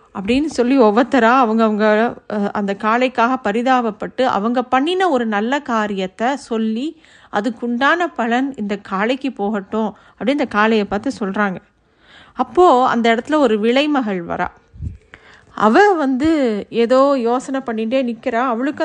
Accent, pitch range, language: native, 220-270 Hz, Tamil